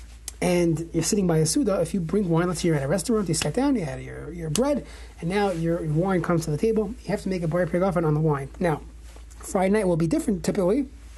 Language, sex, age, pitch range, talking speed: English, male, 30-49, 165-210 Hz, 260 wpm